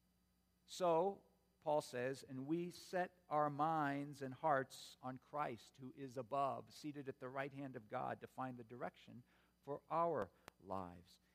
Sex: male